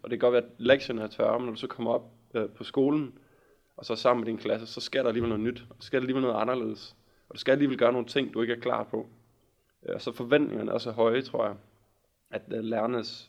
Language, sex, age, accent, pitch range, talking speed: Danish, male, 20-39, native, 115-125 Hz, 275 wpm